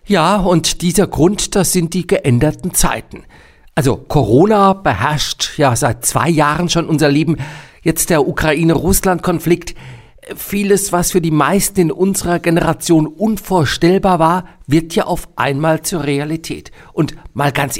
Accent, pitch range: German, 140-180 Hz